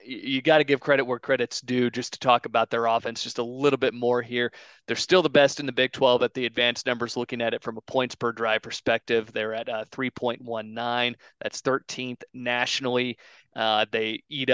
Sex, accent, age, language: male, American, 30-49, English